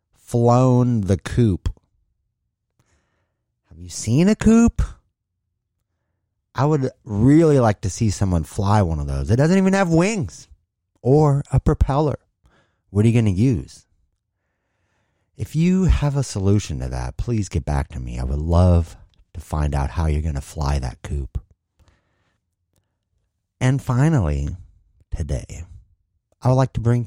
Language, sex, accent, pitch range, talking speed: English, male, American, 85-120 Hz, 145 wpm